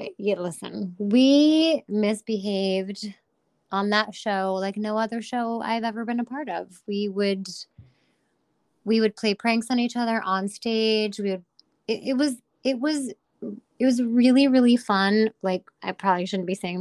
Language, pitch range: English, 195-235 Hz